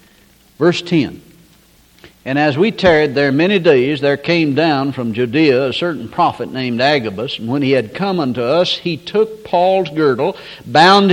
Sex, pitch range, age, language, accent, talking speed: male, 140-195 Hz, 60-79, English, American, 165 wpm